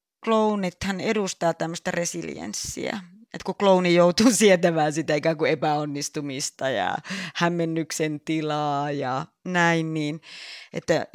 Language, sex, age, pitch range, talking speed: Finnish, female, 30-49, 165-230 Hz, 100 wpm